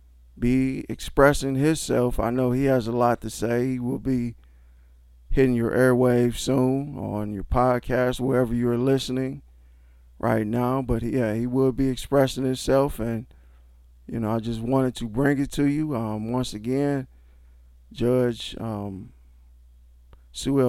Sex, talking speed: male, 145 wpm